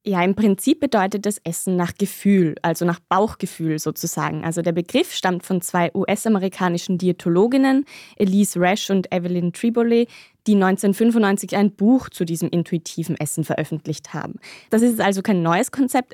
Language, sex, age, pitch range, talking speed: German, female, 20-39, 170-210 Hz, 150 wpm